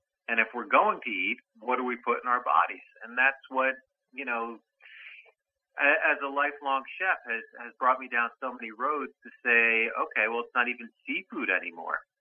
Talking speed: 190 wpm